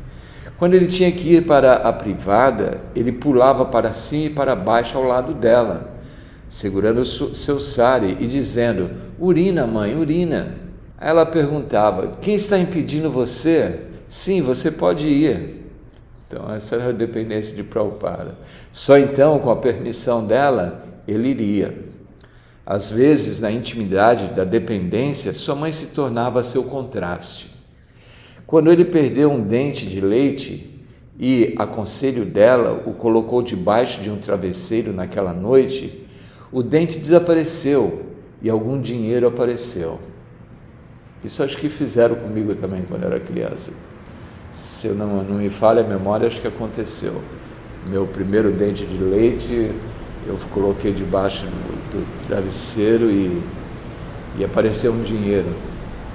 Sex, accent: male, Brazilian